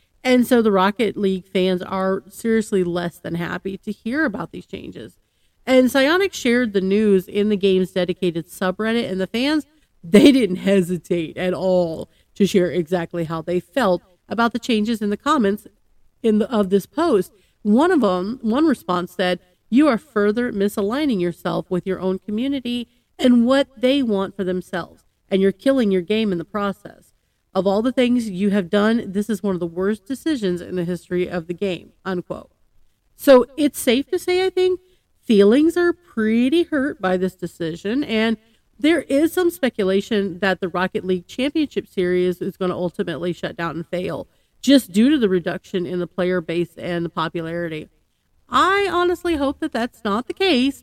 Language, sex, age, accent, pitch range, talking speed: English, female, 40-59, American, 185-255 Hz, 180 wpm